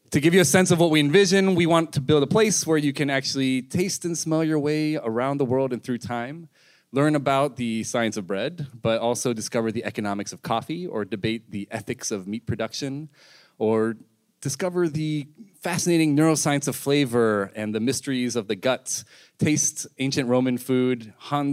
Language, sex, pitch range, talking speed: English, male, 110-145 Hz, 190 wpm